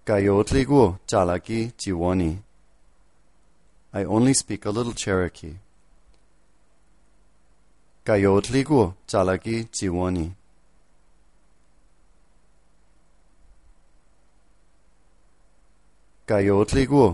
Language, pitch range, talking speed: English, 85-110 Hz, 45 wpm